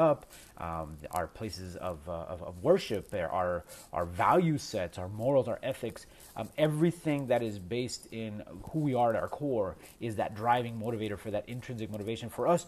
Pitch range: 105-140 Hz